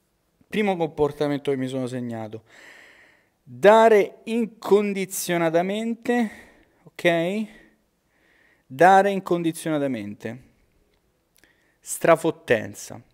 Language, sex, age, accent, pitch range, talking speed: Italian, male, 30-49, native, 125-195 Hz, 55 wpm